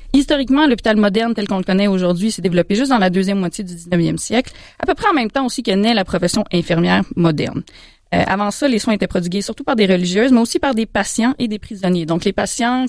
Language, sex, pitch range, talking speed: French, female, 180-225 Hz, 245 wpm